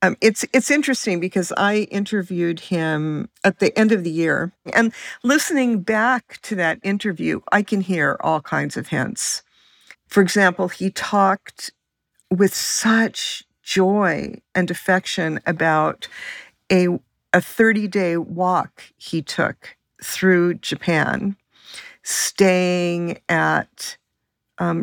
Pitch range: 175-220 Hz